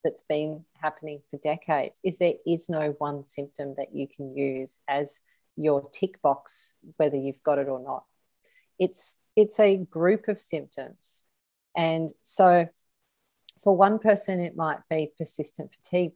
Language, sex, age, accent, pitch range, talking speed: English, female, 40-59, Australian, 150-195 Hz, 150 wpm